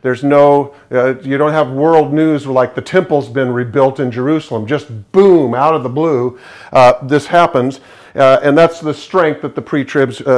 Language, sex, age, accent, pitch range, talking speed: English, male, 50-69, American, 130-155 Hz, 185 wpm